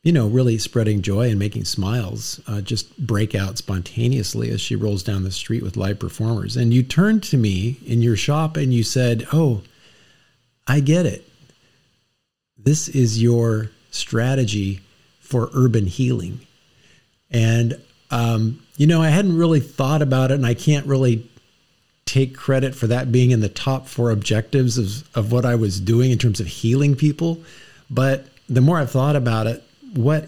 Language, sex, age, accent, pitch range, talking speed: English, male, 50-69, American, 115-145 Hz, 170 wpm